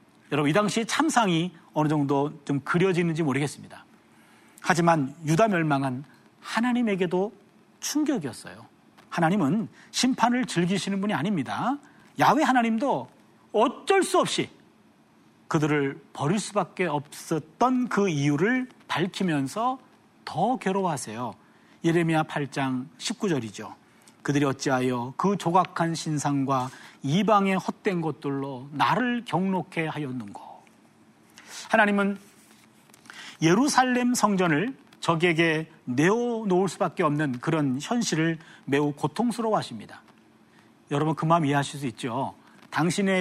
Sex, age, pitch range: male, 40-59, 150-220 Hz